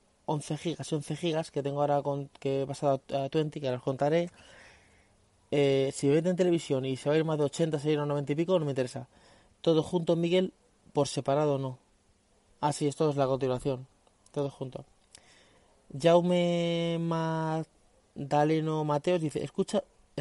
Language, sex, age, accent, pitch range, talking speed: Spanish, male, 30-49, Spanish, 140-175 Hz, 170 wpm